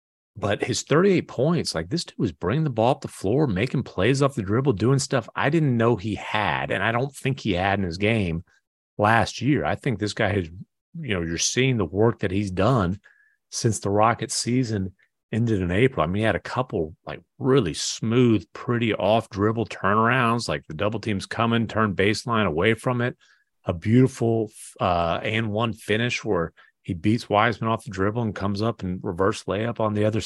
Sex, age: male, 30-49